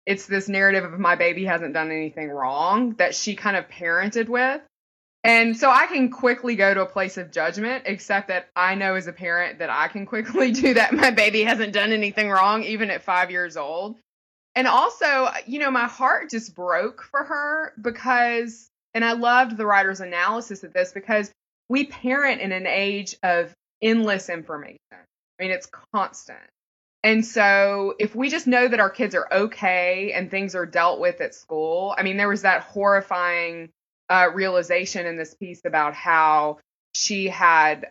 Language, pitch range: English, 180-230 Hz